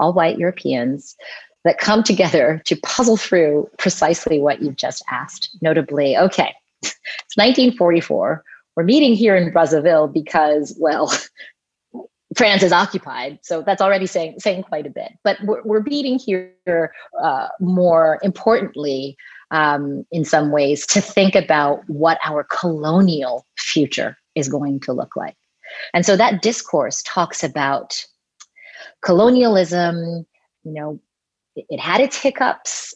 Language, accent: English, American